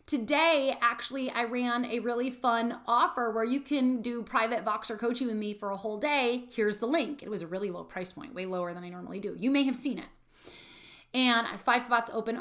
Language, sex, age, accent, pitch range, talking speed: English, female, 30-49, American, 200-250 Hz, 220 wpm